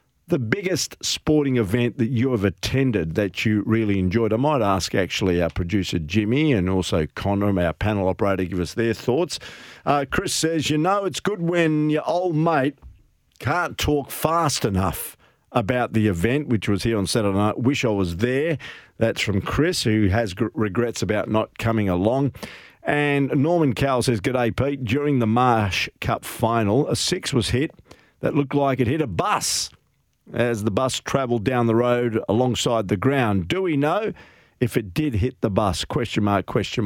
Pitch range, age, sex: 100-130 Hz, 50-69, male